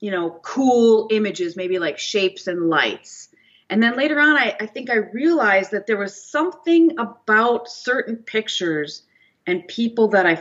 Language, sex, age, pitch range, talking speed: English, female, 30-49, 170-210 Hz, 165 wpm